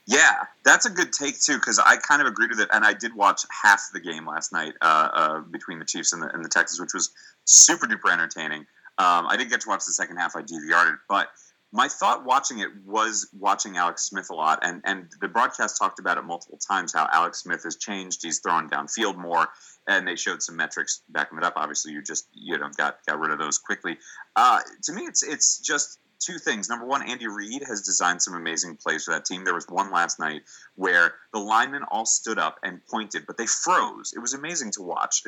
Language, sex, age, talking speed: English, male, 30-49, 235 wpm